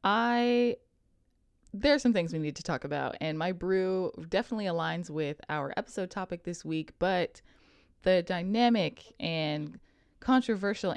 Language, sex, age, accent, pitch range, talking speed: English, female, 20-39, American, 155-200 Hz, 140 wpm